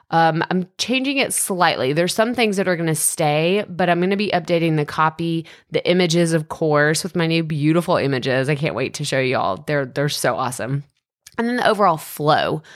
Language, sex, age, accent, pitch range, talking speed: English, female, 20-39, American, 150-185 Hz, 215 wpm